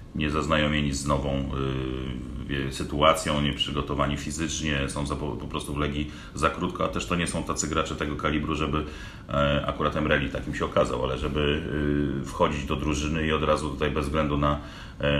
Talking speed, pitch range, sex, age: 180 wpm, 70-80 Hz, male, 40-59